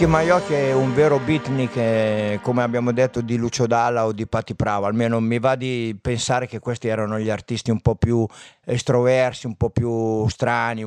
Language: Italian